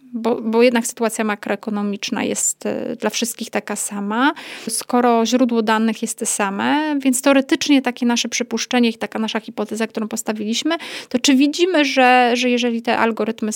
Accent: native